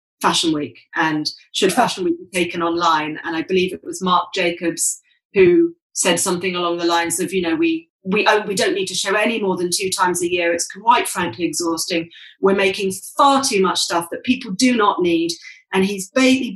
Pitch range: 180-255 Hz